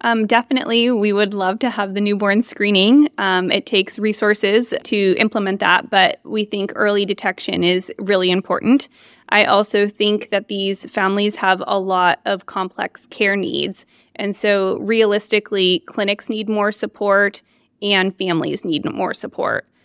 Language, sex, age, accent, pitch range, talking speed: English, female, 20-39, American, 190-215 Hz, 150 wpm